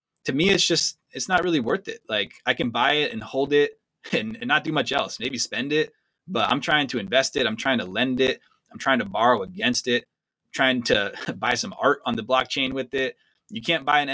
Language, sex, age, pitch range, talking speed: English, male, 20-39, 125-160 Hz, 240 wpm